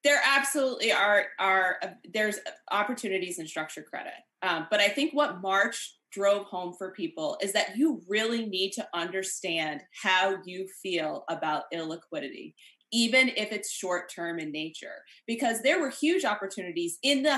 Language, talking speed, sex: English, 155 wpm, female